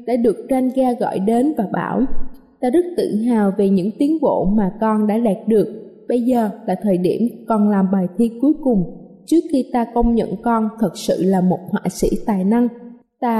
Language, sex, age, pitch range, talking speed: Vietnamese, female, 20-39, 210-265 Hz, 210 wpm